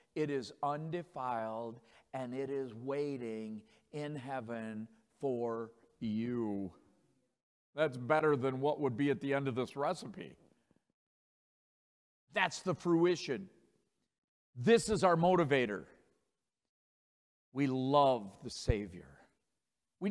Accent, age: American, 50-69